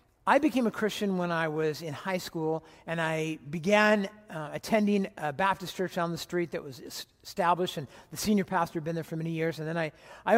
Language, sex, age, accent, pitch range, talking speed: English, male, 50-69, American, 175-225 Hz, 220 wpm